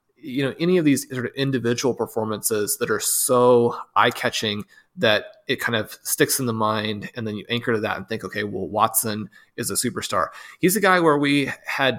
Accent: American